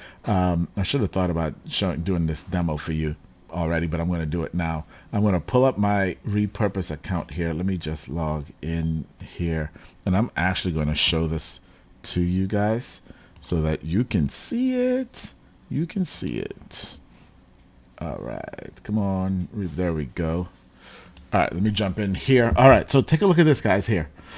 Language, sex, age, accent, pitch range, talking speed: English, male, 40-59, American, 90-140 Hz, 190 wpm